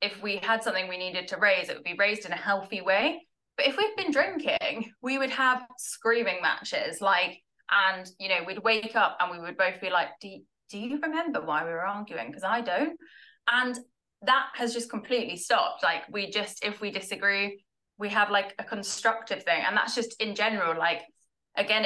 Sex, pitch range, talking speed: female, 185-230 Hz, 210 wpm